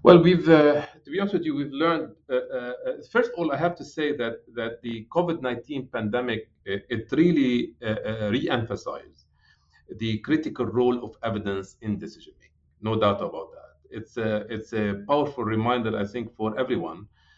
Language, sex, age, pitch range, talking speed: English, male, 40-59, 105-130 Hz, 180 wpm